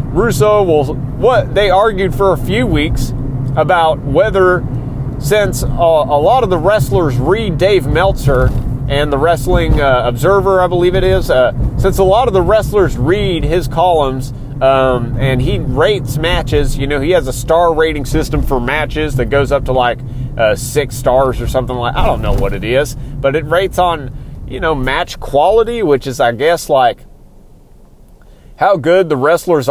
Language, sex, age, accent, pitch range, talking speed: English, male, 30-49, American, 125-155 Hz, 180 wpm